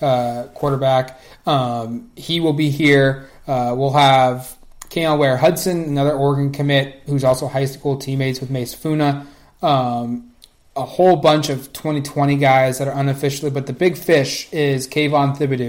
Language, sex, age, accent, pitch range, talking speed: English, male, 30-49, American, 135-150 Hz, 155 wpm